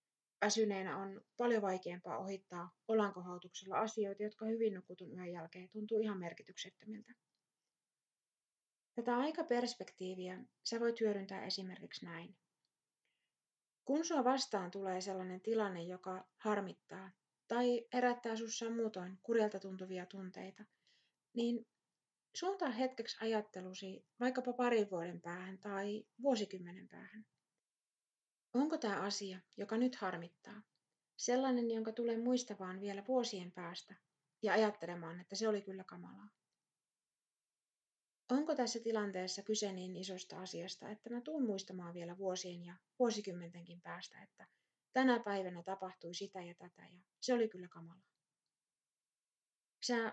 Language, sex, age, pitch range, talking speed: Finnish, female, 30-49, 185-230 Hz, 115 wpm